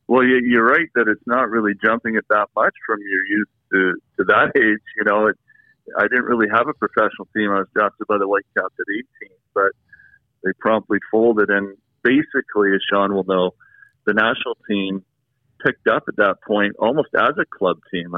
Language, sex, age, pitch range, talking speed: English, male, 50-69, 100-120 Hz, 195 wpm